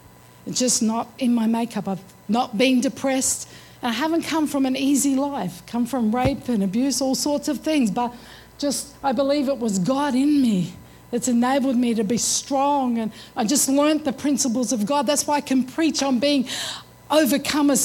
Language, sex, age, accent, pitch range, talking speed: English, female, 50-69, Australian, 250-300 Hz, 190 wpm